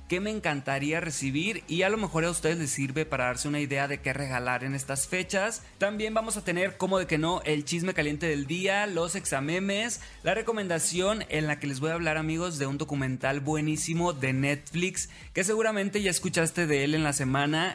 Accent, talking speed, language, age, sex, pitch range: Mexican, 210 wpm, Spanish, 20-39, male, 145-190 Hz